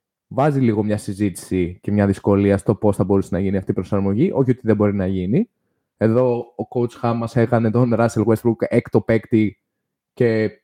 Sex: male